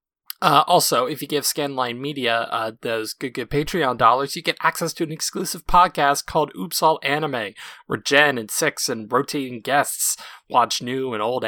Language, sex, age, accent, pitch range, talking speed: English, male, 20-39, American, 125-165 Hz, 185 wpm